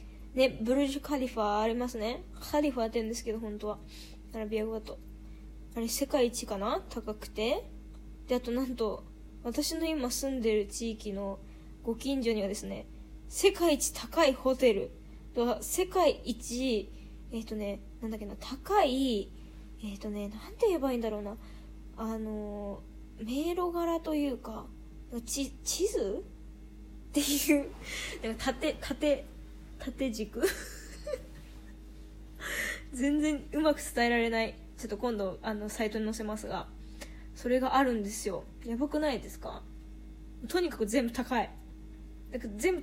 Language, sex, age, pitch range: Japanese, female, 20-39, 220-280 Hz